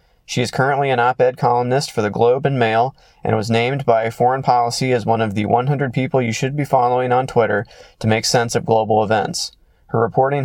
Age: 30-49